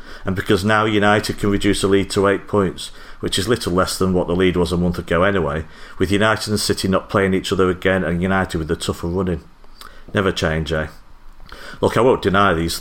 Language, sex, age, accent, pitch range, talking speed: English, male, 40-59, British, 85-100 Hz, 220 wpm